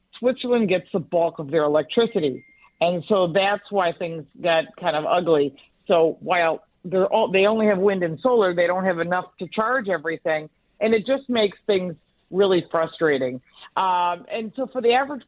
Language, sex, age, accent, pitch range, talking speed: English, female, 50-69, American, 160-205 Hz, 180 wpm